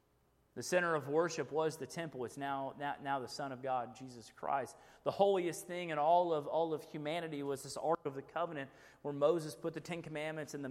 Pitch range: 130-160 Hz